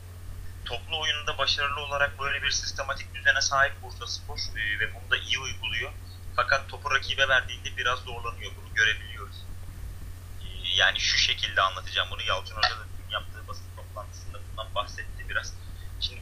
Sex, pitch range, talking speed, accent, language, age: male, 90-95 Hz, 150 wpm, native, Turkish, 30-49